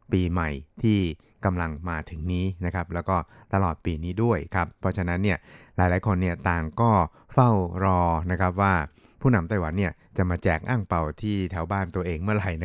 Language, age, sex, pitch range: Thai, 60-79, male, 85-100 Hz